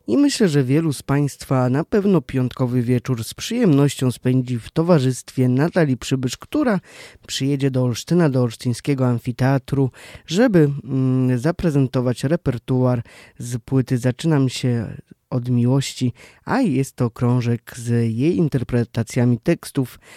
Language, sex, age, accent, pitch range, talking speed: Polish, male, 20-39, native, 120-145 Hz, 120 wpm